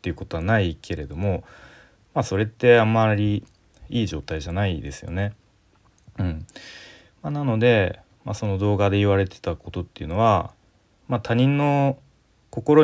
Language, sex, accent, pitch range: Japanese, male, native, 90-115 Hz